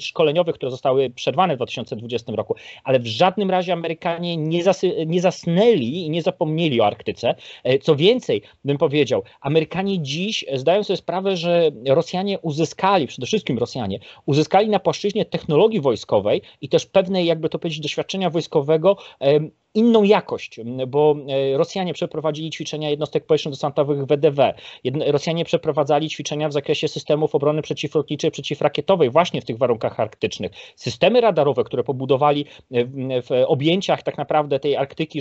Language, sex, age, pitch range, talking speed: Polish, male, 30-49, 140-175 Hz, 140 wpm